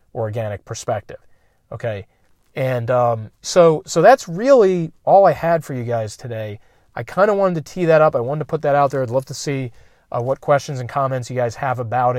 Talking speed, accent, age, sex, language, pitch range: 215 wpm, American, 40-59, male, English, 125-155 Hz